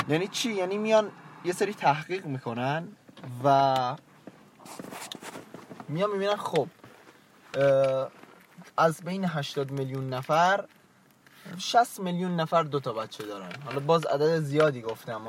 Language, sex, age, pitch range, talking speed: Persian, male, 20-39, 140-180 Hz, 115 wpm